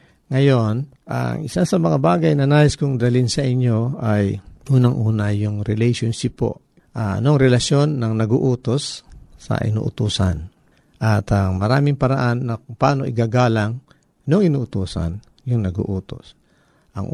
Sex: male